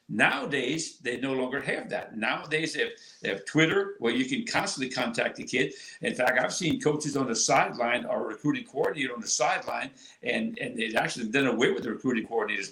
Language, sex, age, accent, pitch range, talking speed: English, male, 60-79, American, 135-155 Hz, 205 wpm